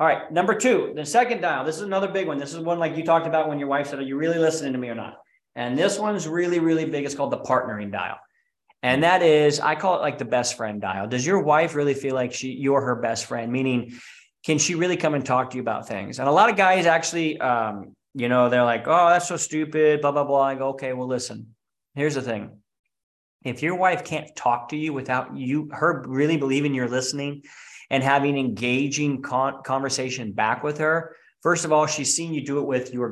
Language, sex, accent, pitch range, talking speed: English, male, American, 125-160 Hz, 240 wpm